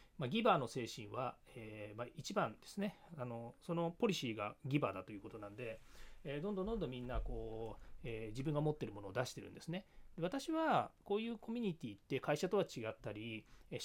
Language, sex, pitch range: Japanese, male, 115-185 Hz